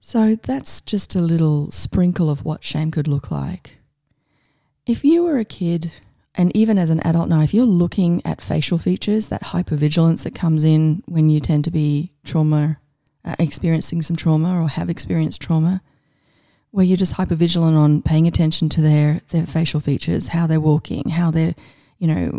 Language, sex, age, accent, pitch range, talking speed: English, female, 30-49, Australian, 145-175 Hz, 180 wpm